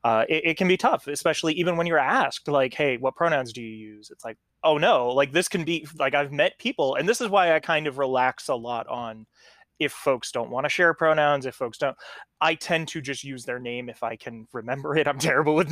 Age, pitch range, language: 20-39, 125-160 Hz, English